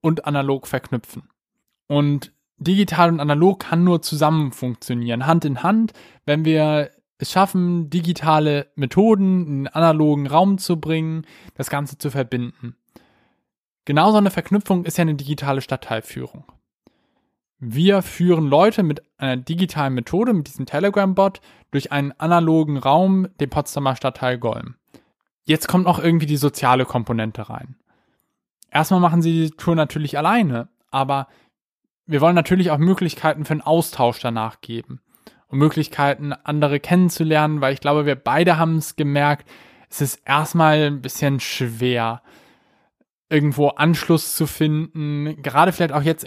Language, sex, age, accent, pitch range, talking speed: German, male, 10-29, German, 135-165 Hz, 140 wpm